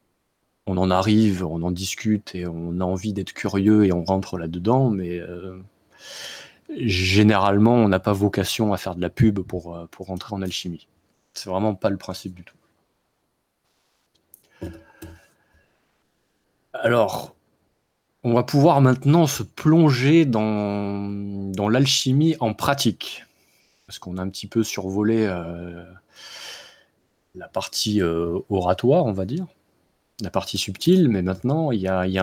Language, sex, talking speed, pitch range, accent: French, male, 140 wpm, 95-120 Hz, French